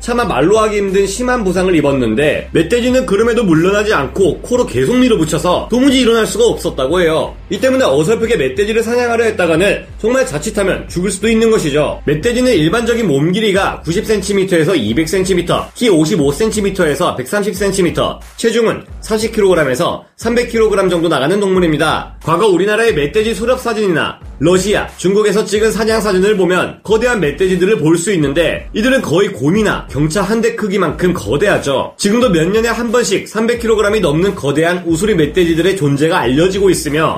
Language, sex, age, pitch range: Korean, male, 30-49, 170-225 Hz